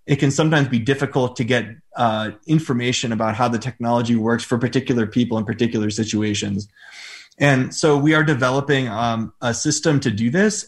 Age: 30-49